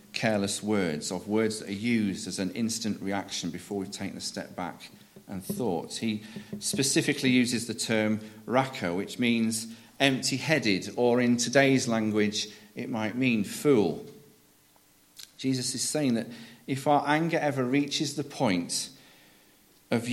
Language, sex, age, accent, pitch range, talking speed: English, male, 40-59, British, 105-130 Hz, 145 wpm